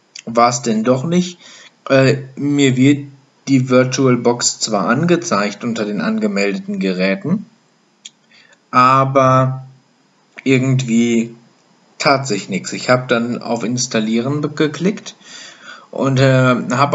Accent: German